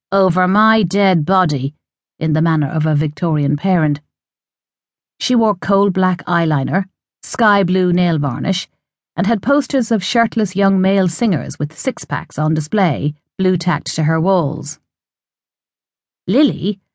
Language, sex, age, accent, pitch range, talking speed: English, female, 50-69, Irish, 160-205 Hz, 125 wpm